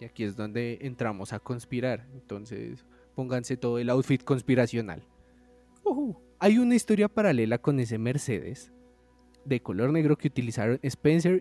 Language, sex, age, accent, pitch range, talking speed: Spanish, male, 20-39, Colombian, 105-150 Hz, 135 wpm